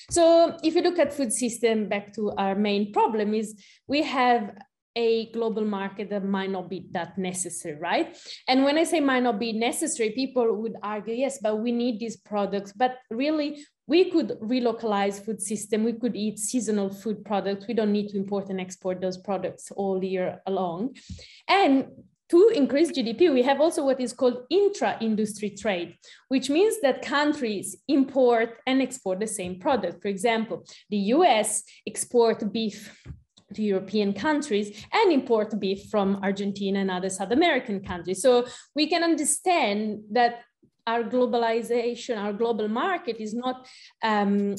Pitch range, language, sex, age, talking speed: 205-265 Hz, English, female, 20-39, 165 wpm